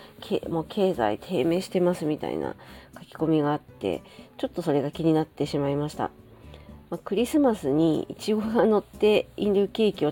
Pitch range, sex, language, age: 145-200 Hz, female, Japanese, 40-59